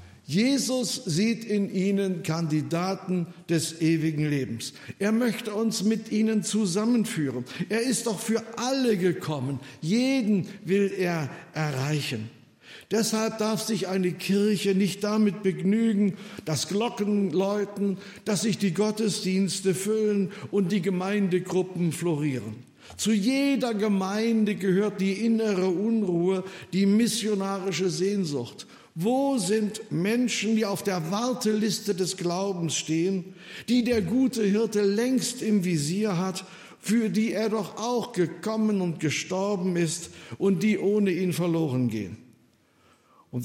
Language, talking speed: German, 120 wpm